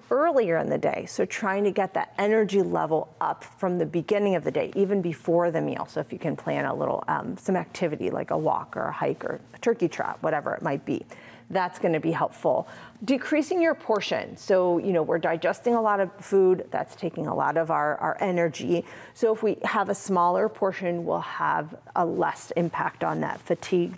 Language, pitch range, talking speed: English, 165-205 Hz, 215 wpm